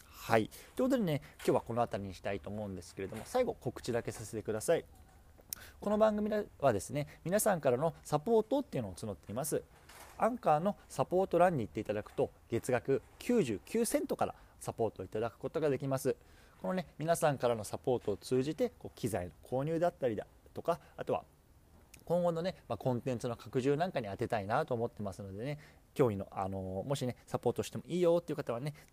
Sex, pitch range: male, 100-160 Hz